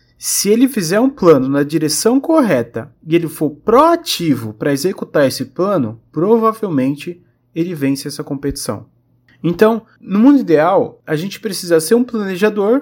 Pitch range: 150-225 Hz